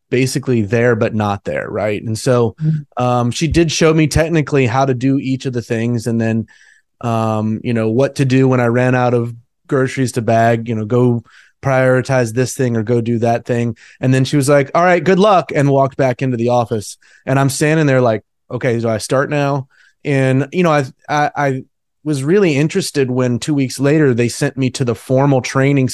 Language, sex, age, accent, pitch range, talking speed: English, male, 30-49, American, 120-145 Hz, 215 wpm